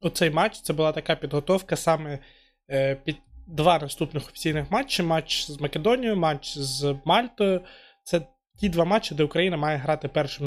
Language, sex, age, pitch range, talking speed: Ukrainian, male, 20-39, 150-180 Hz, 160 wpm